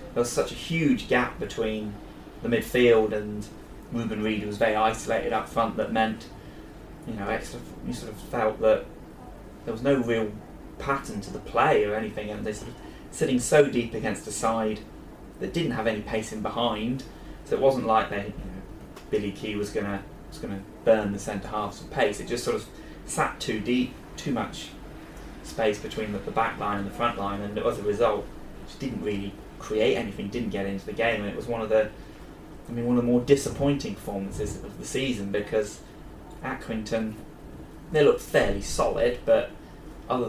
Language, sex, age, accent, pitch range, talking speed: English, male, 20-39, British, 105-115 Hz, 190 wpm